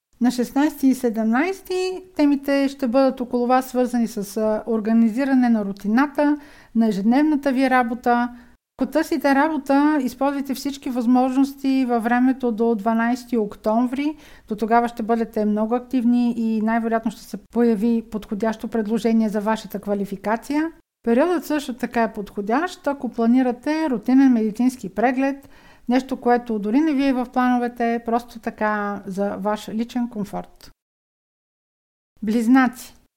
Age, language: 50-69, Bulgarian